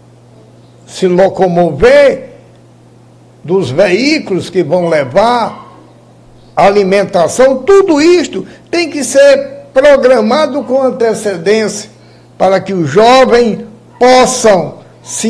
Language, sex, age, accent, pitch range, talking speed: Portuguese, male, 60-79, Brazilian, 155-225 Hz, 85 wpm